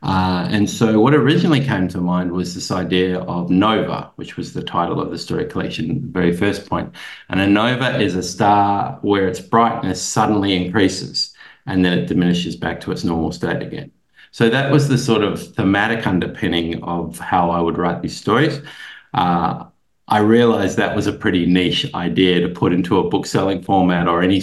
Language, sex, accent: English, male, Australian